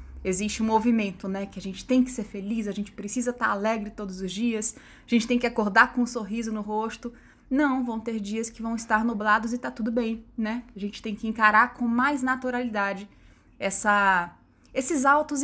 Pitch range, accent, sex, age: 195-240 Hz, Brazilian, female, 20-39